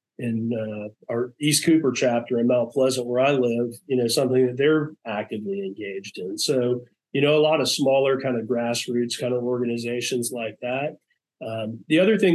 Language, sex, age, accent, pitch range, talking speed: English, male, 40-59, American, 115-135 Hz, 190 wpm